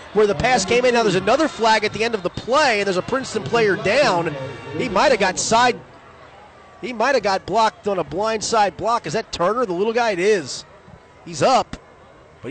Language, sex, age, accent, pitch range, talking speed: English, male, 30-49, American, 140-210 Hz, 225 wpm